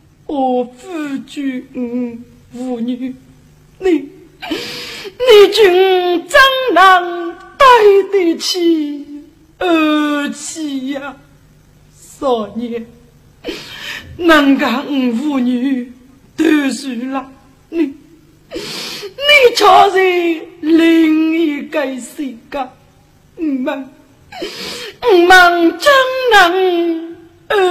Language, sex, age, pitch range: Chinese, female, 40-59, 255-345 Hz